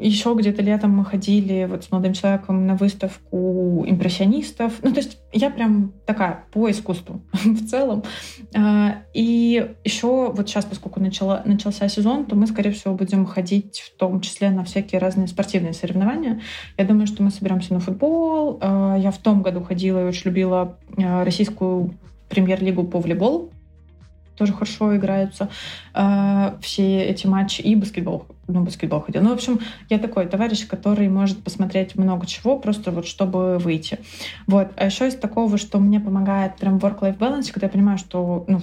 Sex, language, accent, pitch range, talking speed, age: female, Russian, native, 185-215 Hz, 165 wpm, 20-39